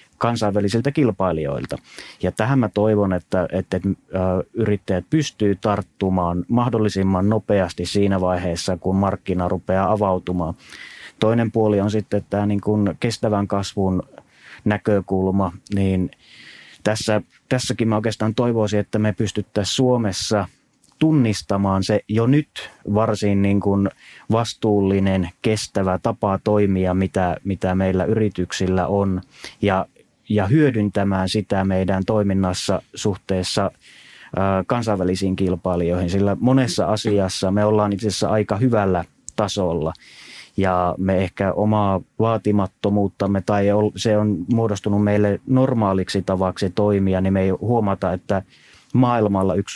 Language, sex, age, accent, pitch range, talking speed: Finnish, male, 30-49, native, 95-105 Hz, 115 wpm